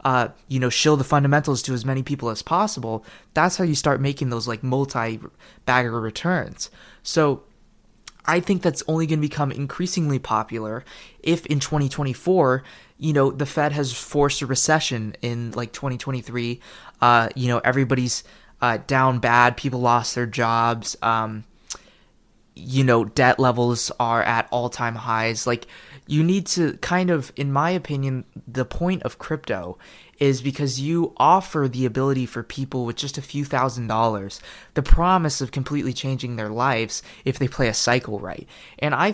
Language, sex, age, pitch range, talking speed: English, male, 20-39, 120-145 Hz, 165 wpm